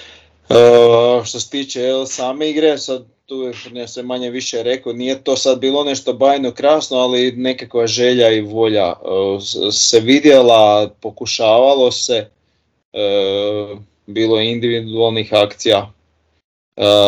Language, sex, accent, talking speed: Croatian, male, Serbian, 130 wpm